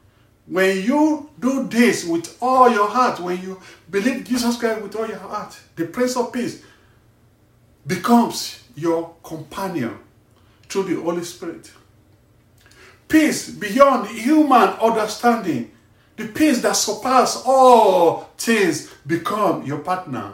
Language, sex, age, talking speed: English, male, 50-69, 120 wpm